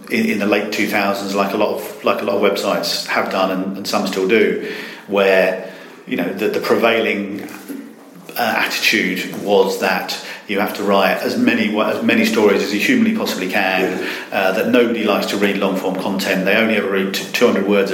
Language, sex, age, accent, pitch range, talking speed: English, male, 40-59, British, 95-110 Hz, 195 wpm